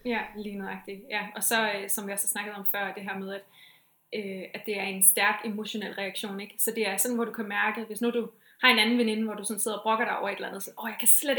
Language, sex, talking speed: Danish, female, 300 wpm